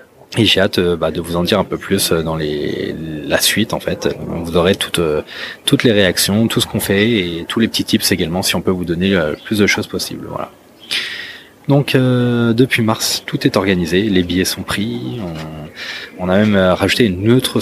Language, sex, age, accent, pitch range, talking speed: French, male, 20-39, French, 85-110 Hz, 205 wpm